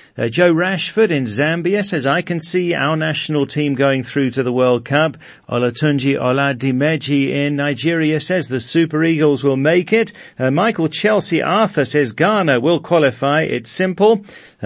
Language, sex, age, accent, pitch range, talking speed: English, male, 40-59, British, 120-150 Hz, 160 wpm